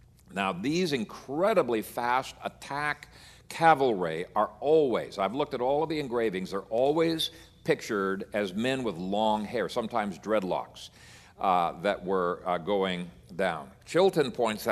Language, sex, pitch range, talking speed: English, male, 105-150 Hz, 135 wpm